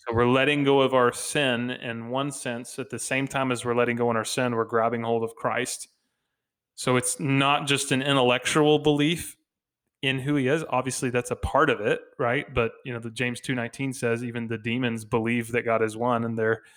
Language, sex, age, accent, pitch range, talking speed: English, male, 20-39, American, 120-140 Hz, 220 wpm